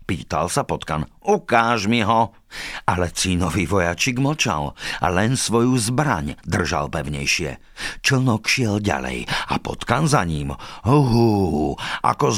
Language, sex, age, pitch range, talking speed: Slovak, male, 50-69, 95-135 Hz, 120 wpm